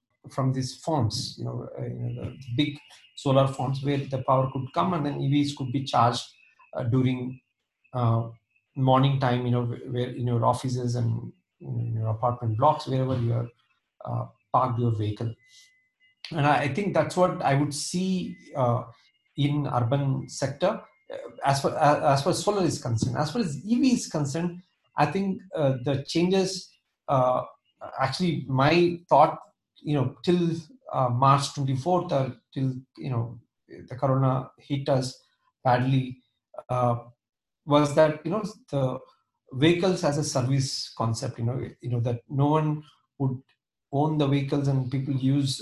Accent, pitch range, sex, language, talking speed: Indian, 125-150 Hz, male, English, 160 wpm